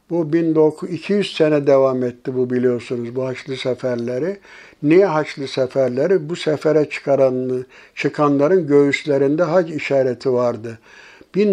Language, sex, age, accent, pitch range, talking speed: Turkish, male, 60-79, native, 140-180 Hz, 110 wpm